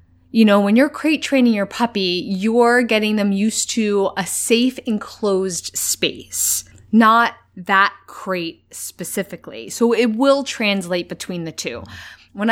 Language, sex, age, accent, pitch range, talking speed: English, female, 20-39, American, 180-235 Hz, 140 wpm